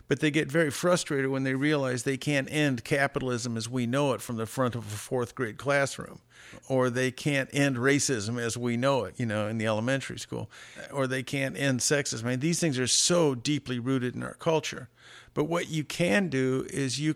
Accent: American